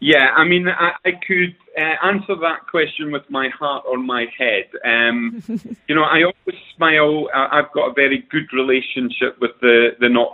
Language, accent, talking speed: English, British, 190 wpm